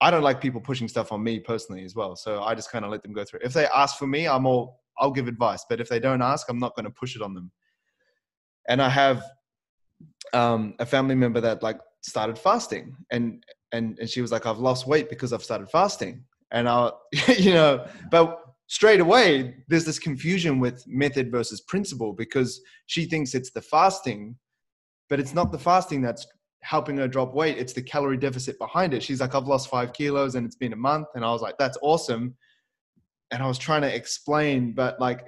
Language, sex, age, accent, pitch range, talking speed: English, male, 20-39, Australian, 120-145 Hz, 220 wpm